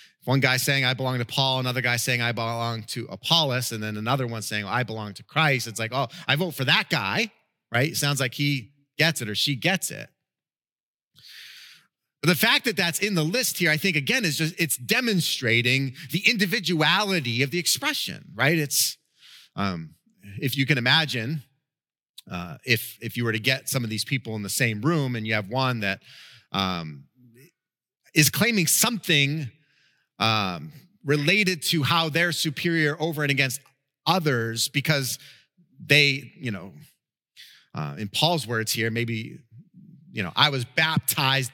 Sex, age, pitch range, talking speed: male, 30-49, 120-165 Hz, 170 wpm